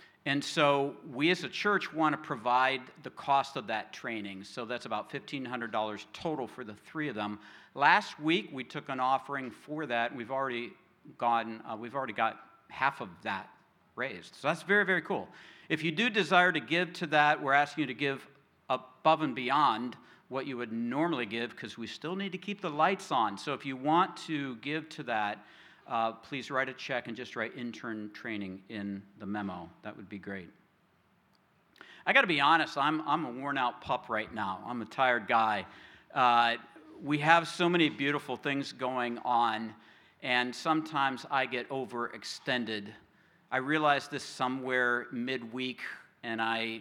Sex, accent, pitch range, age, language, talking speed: male, American, 115-150 Hz, 50-69, English, 180 wpm